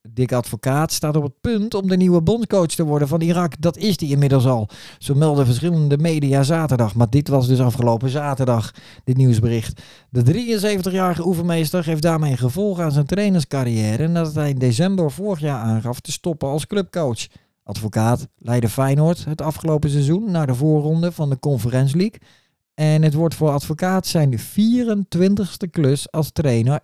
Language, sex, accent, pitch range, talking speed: Dutch, male, Dutch, 130-180 Hz, 170 wpm